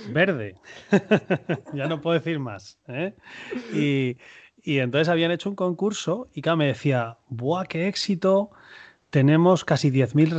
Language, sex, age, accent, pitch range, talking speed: Spanish, male, 30-49, Spanish, 120-165 Hz, 135 wpm